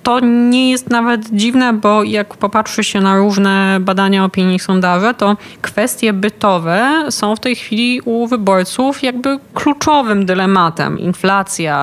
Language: Polish